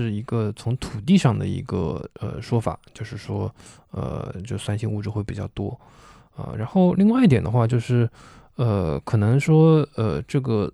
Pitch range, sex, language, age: 110-135 Hz, male, Chinese, 20-39